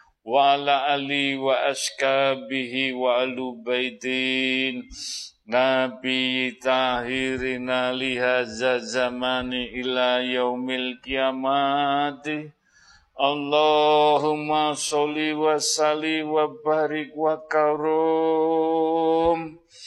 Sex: male